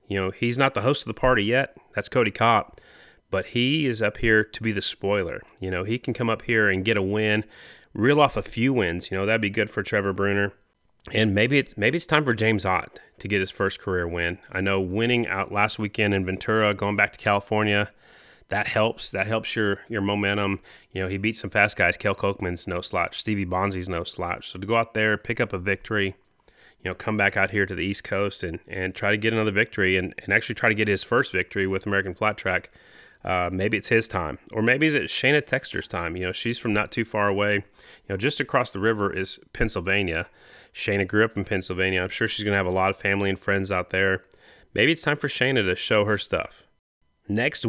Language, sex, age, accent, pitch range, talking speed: English, male, 30-49, American, 95-115 Hz, 240 wpm